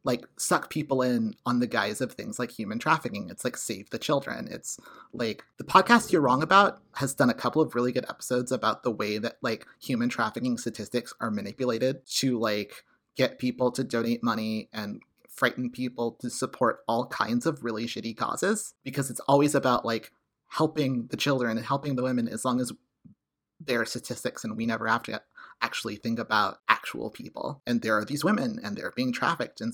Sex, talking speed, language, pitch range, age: male, 200 wpm, English, 115-140 Hz, 30-49